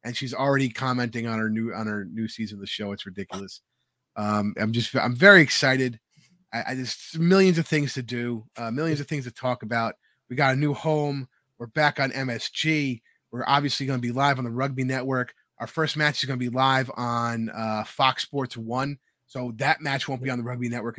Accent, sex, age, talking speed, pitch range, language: American, male, 30-49, 225 wpm, 115-145 Hz, English